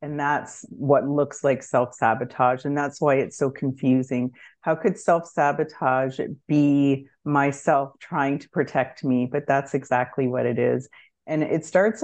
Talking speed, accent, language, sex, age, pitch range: 150 wpm, American, English, female, 30-49, 140-165 Hz